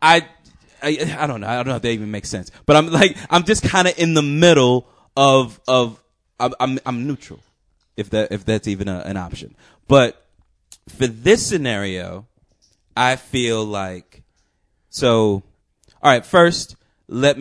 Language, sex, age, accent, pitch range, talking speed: English, male, 20-39, American, 100-145 Hz, 170 wpm